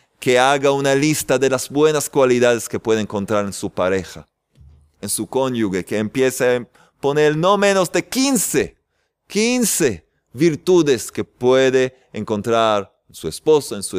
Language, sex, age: Spanish, male, 30-49